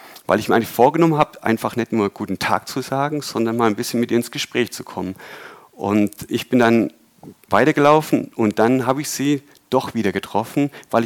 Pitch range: 105-130 Hz